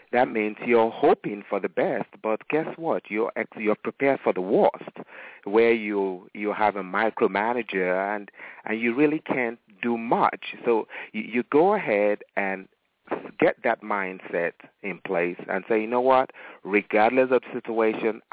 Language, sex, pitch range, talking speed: English, male, 100-120 Hz, 155 wpm